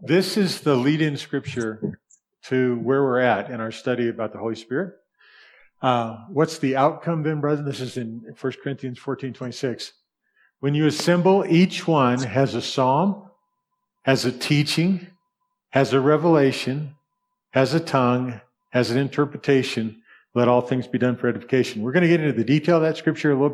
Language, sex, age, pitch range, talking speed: English, male, 50-69, 125-170 Hz, 175 wpm